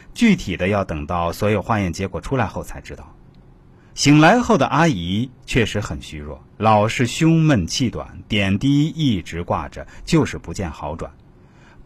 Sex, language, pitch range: male, Chinese, 95-150 Hz